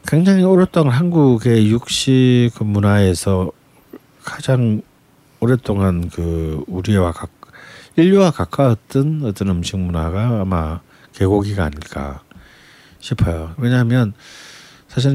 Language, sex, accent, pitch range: Korean, male, native, 85-120 Hz